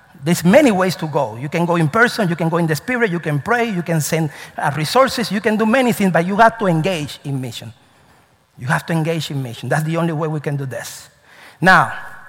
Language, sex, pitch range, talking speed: English, male, 155-220 Hz, 250 wpm